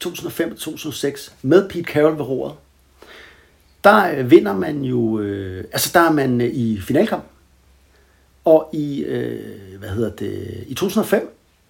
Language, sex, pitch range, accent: Danish, male, 130-185 Hz, native